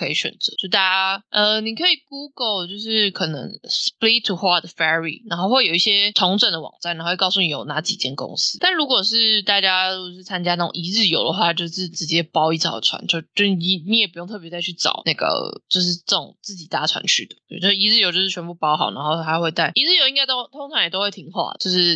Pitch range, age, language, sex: 175-230 Hz, 20-39, Chinese, female